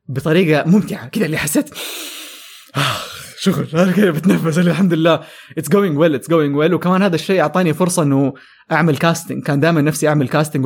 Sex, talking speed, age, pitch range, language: male, 170 wpm, 20-39, 145-195 Hz, English